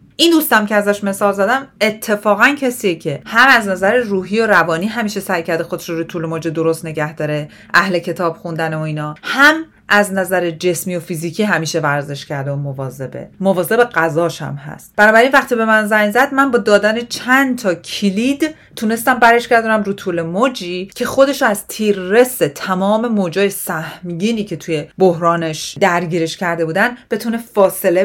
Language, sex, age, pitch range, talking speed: Persian, female, 30-49, 165-225 Hz, 165 wpm